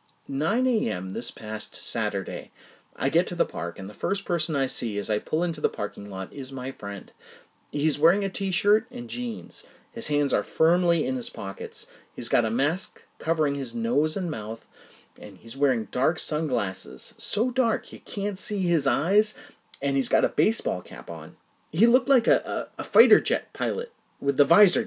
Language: English